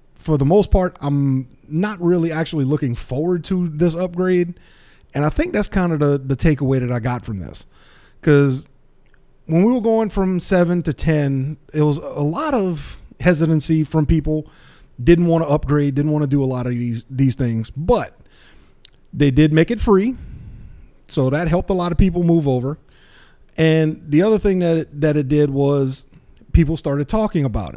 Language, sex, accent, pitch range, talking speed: English, male, American, 130-165 Hz, 185 wpm